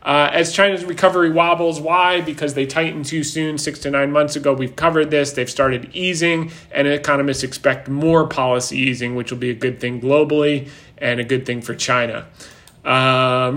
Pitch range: 130-160 Hz